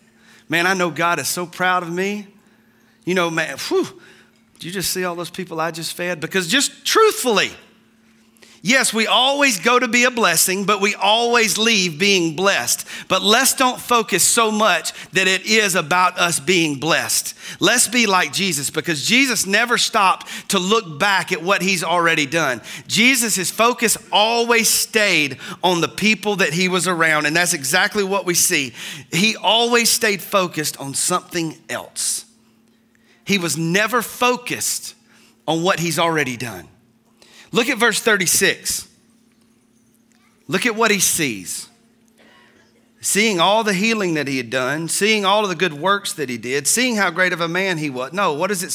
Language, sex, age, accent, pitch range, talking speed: English, male, 40-59, American, 165-220 Hz, 175 wpm